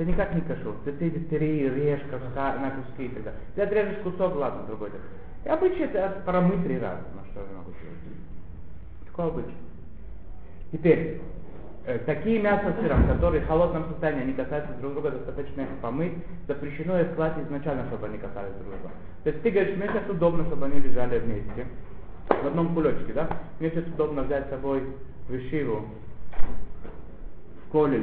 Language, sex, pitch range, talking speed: Russian, male, 110-160 Hz, 155 wpm